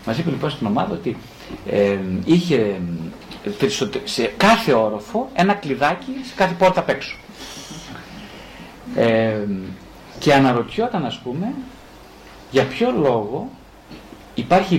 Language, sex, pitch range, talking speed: Greek, male, 120-185 Hz, 115 wpm